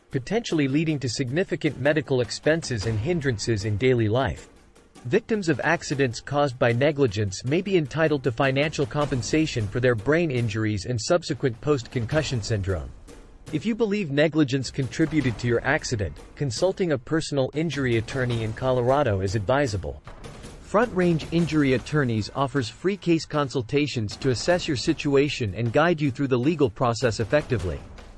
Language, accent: English, American